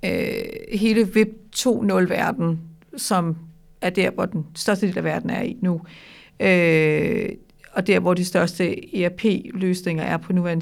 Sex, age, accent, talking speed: female, 50-69, native, 145 wpm